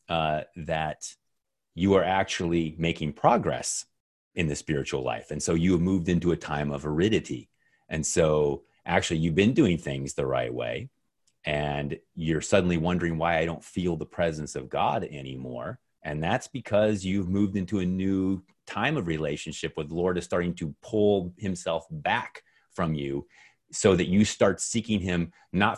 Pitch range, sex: 75-95 Hz, male